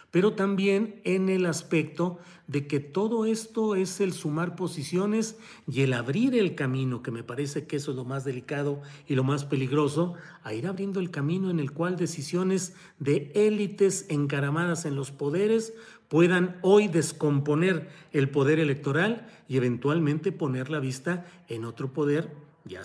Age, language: 40-59, Spanish